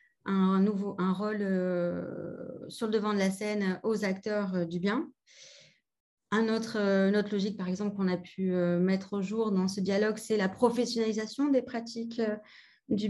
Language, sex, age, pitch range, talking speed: French, female, 30-49, 200-240 Hz, 190 wpm